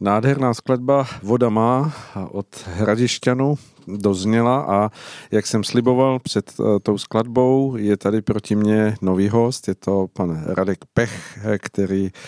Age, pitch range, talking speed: 50-69, 100-115 Hz, 125 wpm